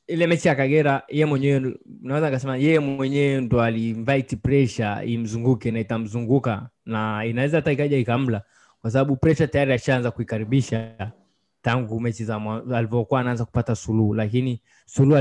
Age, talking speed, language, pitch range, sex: 20-39, 145 wpm, Swahili, 120-145 Hz, male